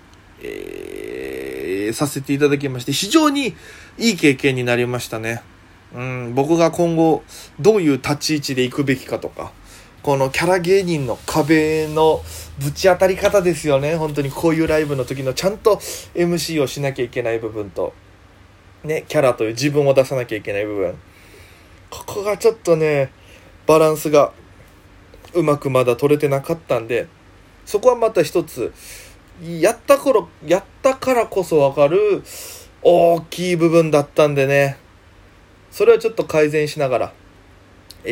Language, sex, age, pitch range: Japanese, male, 20-39, 125-180 Hz